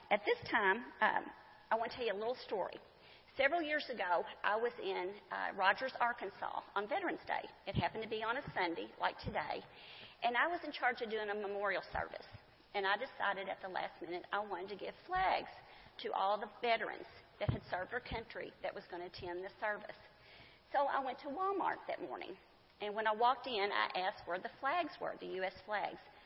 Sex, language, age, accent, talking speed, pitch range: female, English, 40-59, American, 210 wpm, 200-295 Hz